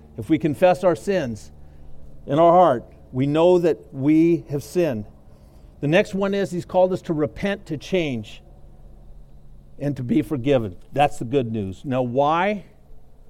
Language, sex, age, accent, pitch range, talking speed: English, male, 50-69, American, 115-160 Hz, 160 wpm